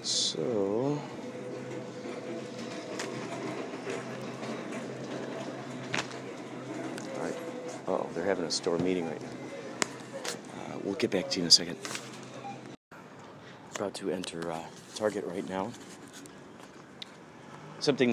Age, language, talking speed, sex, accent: 40-59, English, 95 wpm, male, American